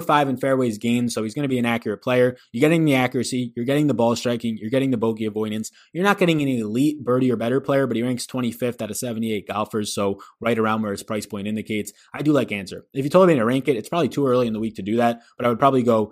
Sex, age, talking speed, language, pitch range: male, 20-39, 285 wpm, English, 110-150 Hz